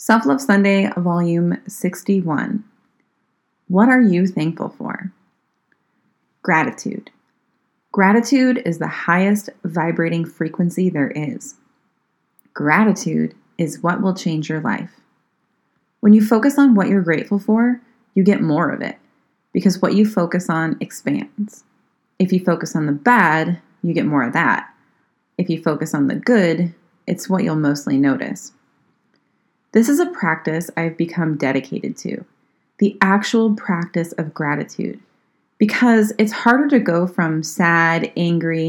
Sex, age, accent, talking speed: female, 30-49, American, 135 wpm